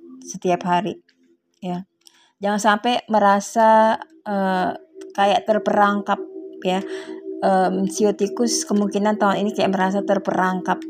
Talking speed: 100 wpm